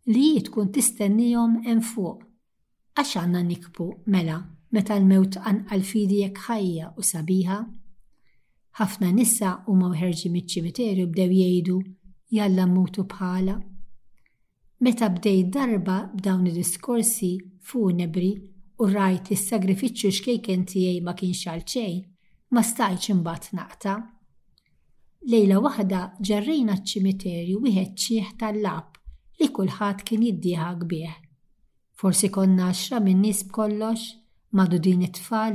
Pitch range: 180-215 Hz